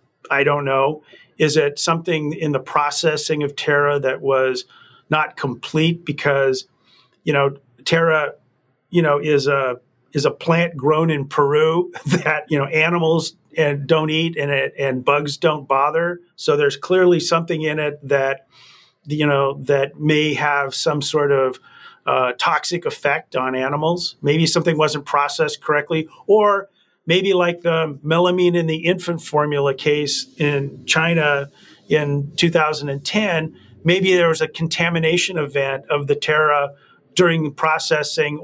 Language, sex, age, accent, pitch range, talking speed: English, male, 40-59, American, 145-170 Hz, 145 wpm